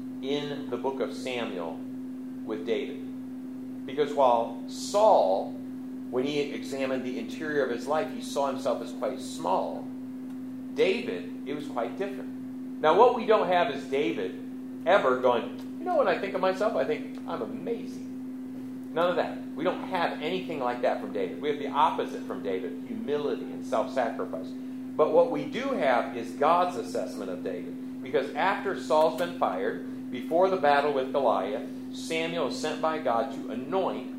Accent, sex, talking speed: American, male, 170 wpm